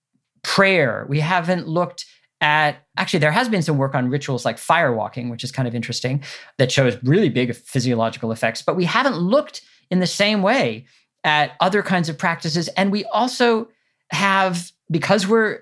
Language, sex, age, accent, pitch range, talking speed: English, male, 40-59, American, 130-185 Hz, 175 wpm